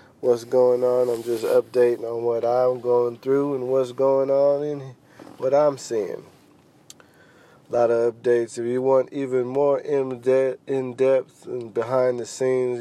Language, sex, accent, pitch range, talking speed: English, male, American, 120-135 Hz, 155 wpm